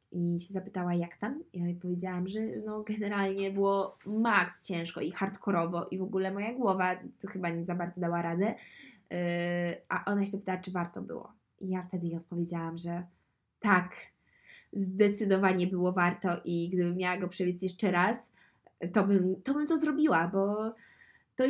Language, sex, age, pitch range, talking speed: Polish, female, 20-39, 185-245 Hz, 165 wpm